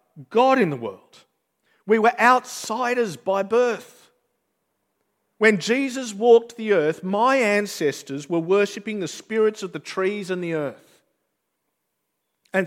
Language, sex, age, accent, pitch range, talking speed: English, male, 50-69, Australian, 155-220 Hz, 130 wpm